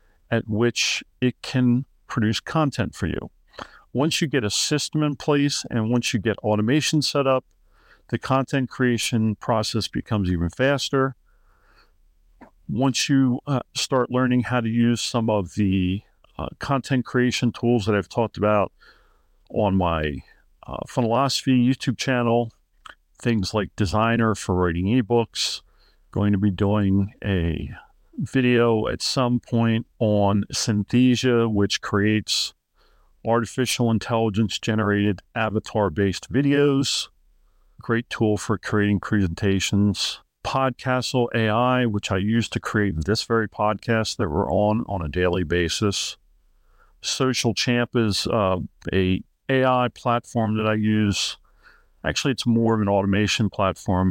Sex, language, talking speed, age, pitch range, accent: male, English, 130 wpm, 50-69, 100-125 Hz, American